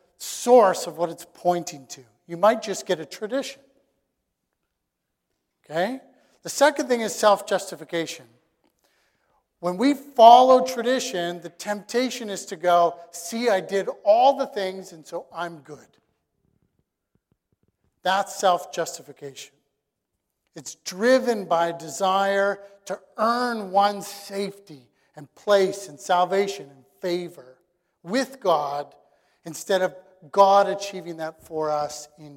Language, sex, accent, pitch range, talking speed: English, male, American, 170-215 Hz, 120 wpm